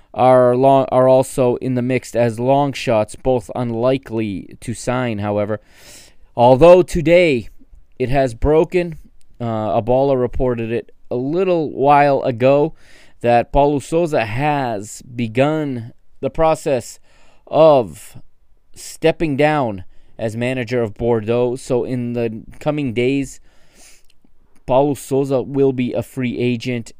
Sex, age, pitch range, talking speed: male, 20-39, 115-140 Hz, 120 wpm